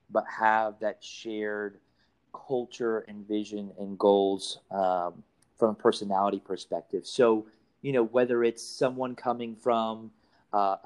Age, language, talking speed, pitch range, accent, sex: 30-49, English, 125 wpm, 105-115 Hz, American, male